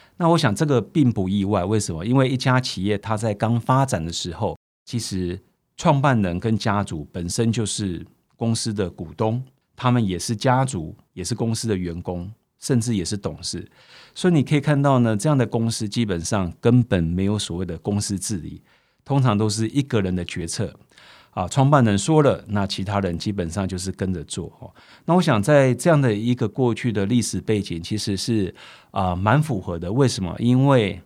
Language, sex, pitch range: Chinese, male, 95-125 Hz